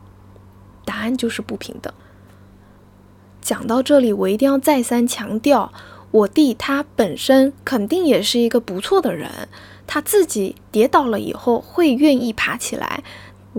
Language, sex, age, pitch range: Chinese, female, 10-29, 205-270 Hz